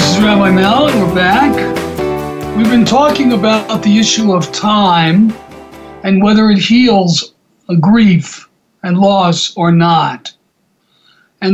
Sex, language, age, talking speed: male, English, 60-79, 135 wpm